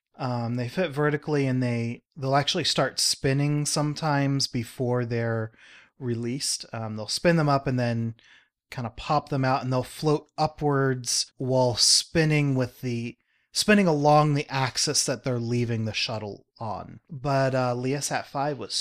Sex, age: male, 30-49